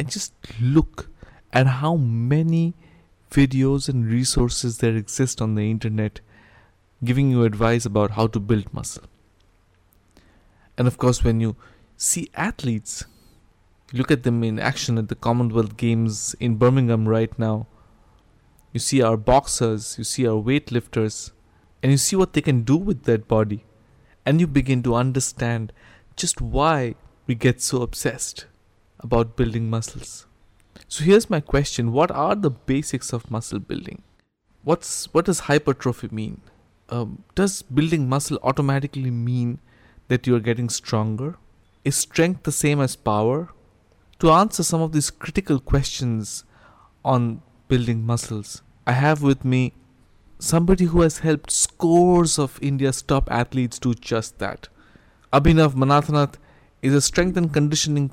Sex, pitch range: male, 110-140 Hz